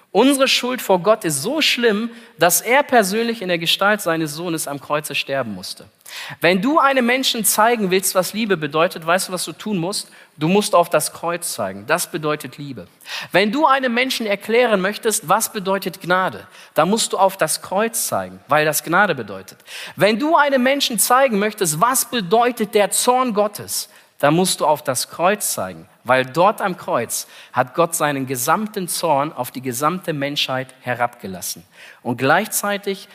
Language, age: German, 40-59